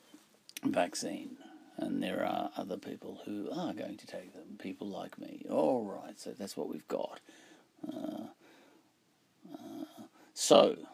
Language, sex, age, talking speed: English, male, 50-69, 135 wpm